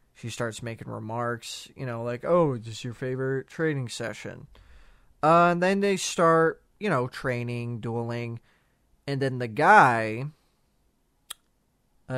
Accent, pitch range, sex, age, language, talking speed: American, 115-145 Hz, male, 20-39, English, 140 wpm